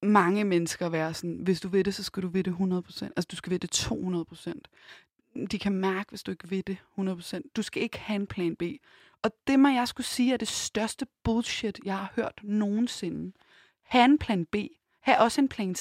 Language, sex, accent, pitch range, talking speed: Danish, female, native, 190-250 Hz, 225 wpm